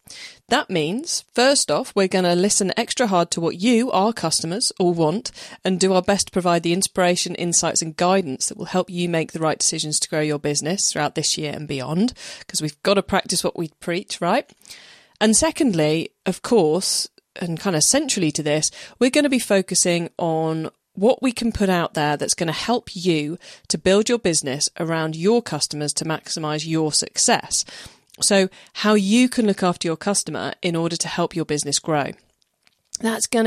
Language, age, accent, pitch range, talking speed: English, 30-49, British, 160-205 Hz, 195 wpm